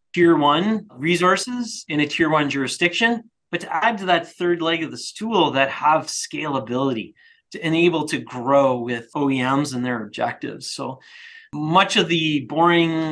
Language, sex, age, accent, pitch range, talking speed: English, male, 30-49, American, 125-155 Hz, 160 wpm